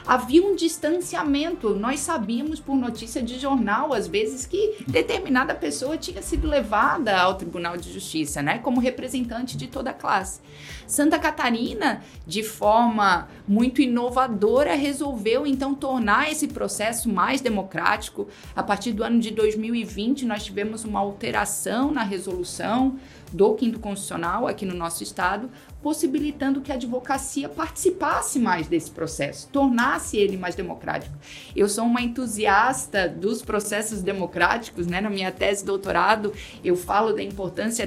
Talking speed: 140 wpm